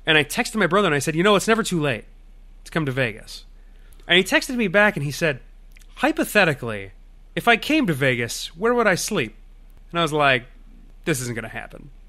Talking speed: 225 wpm